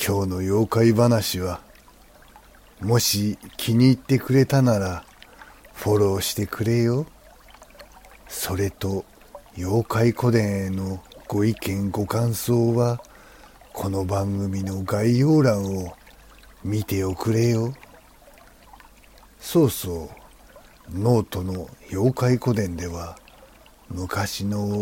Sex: male